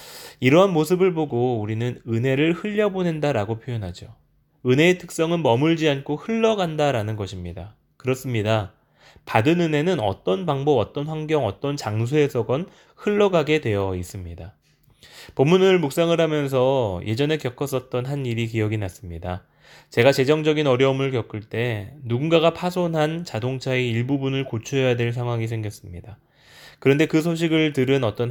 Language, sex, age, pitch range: Korean, male, 20-39, 110-155 Hz